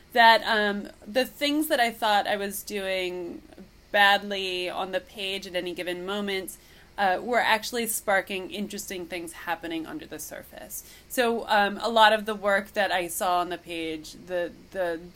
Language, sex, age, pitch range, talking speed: English, female, 20-39, 170-220 Hz, 165 wpm